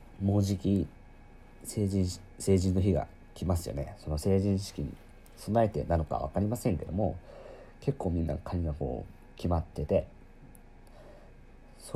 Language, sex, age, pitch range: Japanese, male, 50-69, 75-110 Hz